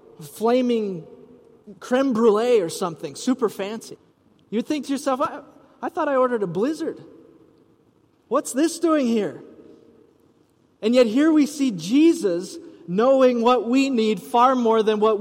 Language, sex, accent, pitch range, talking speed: English, male, American, 190-260 Hz, 140 wpm